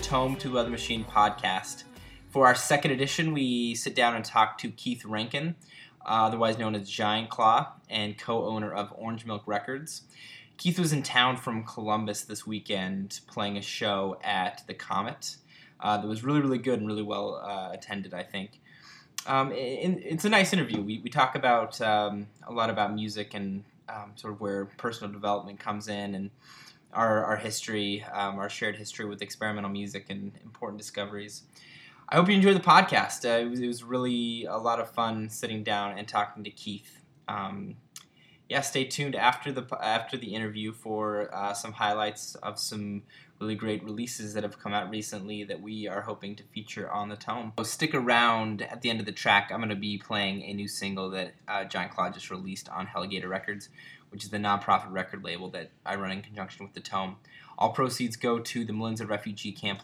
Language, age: English, 20-39